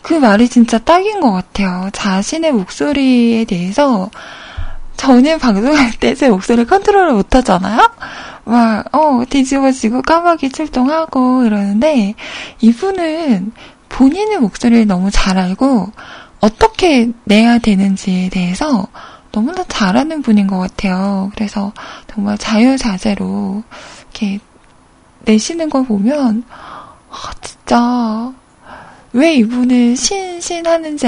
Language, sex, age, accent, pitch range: Korean, female, 20-39, native, 210-280 Hz